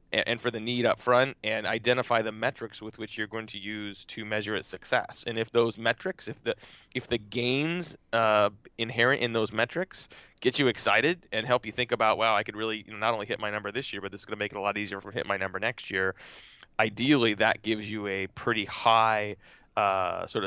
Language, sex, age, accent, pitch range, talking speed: English, male, 30-49, American, 100-115 Hz, 230 wpm